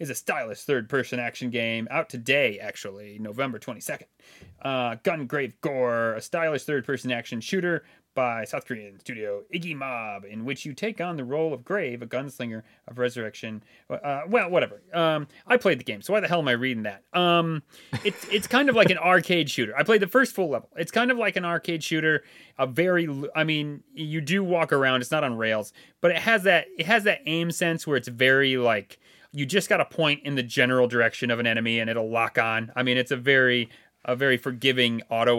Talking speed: 215 wpm